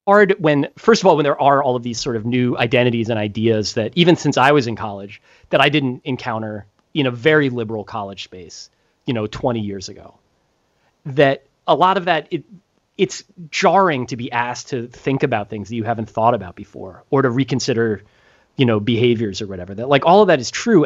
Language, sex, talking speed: English, male, 215 wpm